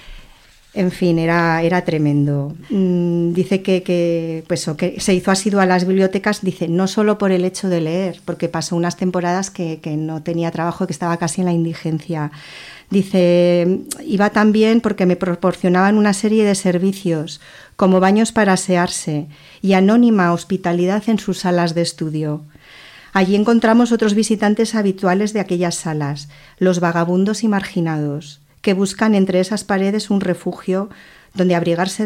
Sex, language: female, Spanish